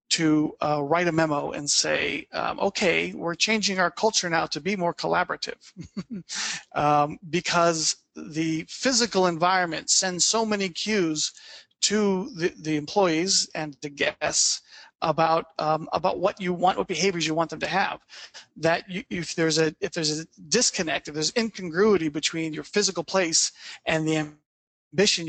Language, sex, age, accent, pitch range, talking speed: English, male, 40-59, American, 160-195 Hz, 155 wpm